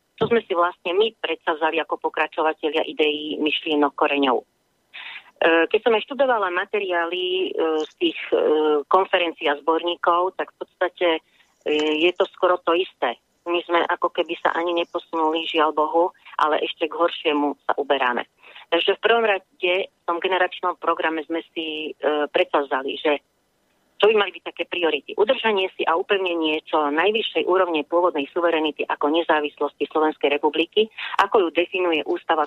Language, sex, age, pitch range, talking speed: Slovak, female, 30-49, 155-185 Hz, 140 wpm